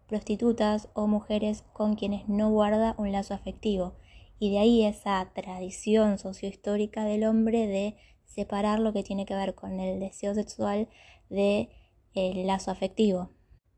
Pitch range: 200-215 Hz